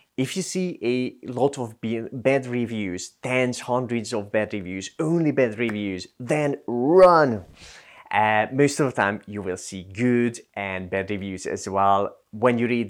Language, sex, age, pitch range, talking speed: English, male, 30-49, 105-130 Hz, 165 wpm